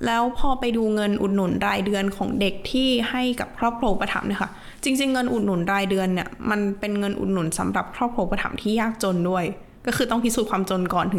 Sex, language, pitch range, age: female, Thai, 195-240 Hz, 20-39